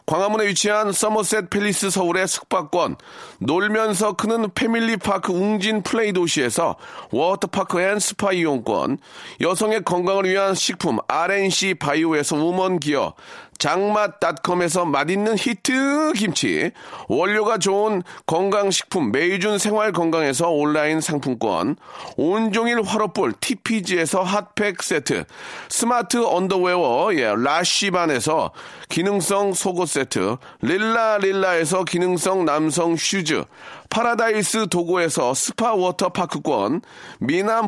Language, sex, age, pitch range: Korean, male, 40-59, 175-215 Hz